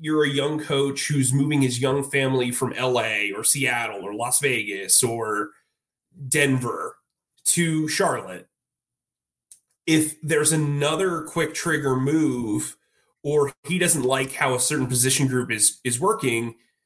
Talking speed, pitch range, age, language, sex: 135 wpm, 125-155 Hz, 30-49, English, male